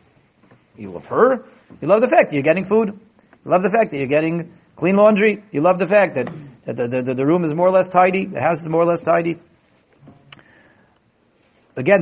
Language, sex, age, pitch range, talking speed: English, male, 40-59, 140-195 Hz, 215 wpm